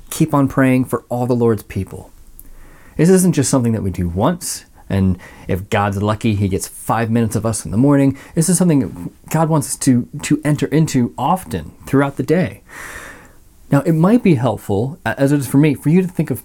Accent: American